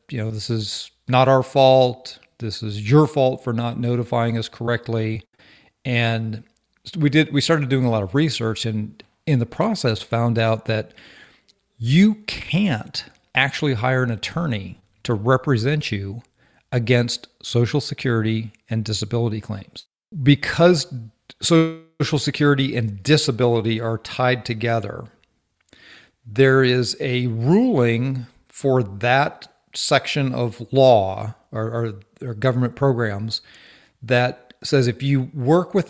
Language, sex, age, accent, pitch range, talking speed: English, male, 50-69, American, 110-135 Hz, 125 wpm